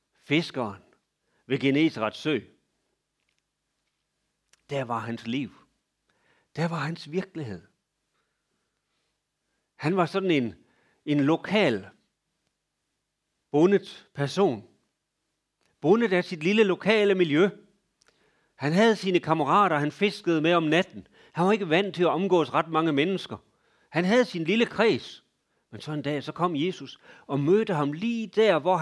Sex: male